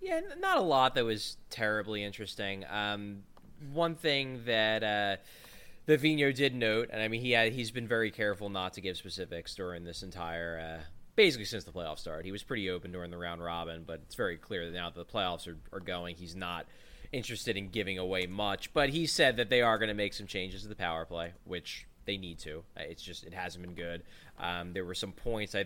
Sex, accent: male, American